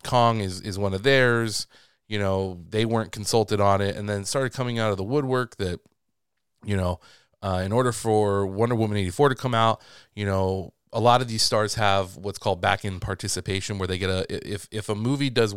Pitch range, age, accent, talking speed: 95-110 Hz, 20-39, American, 215 wpm